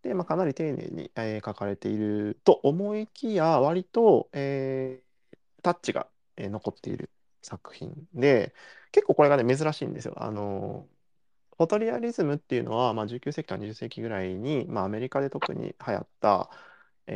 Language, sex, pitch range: Japanese, male, 105-160 Hz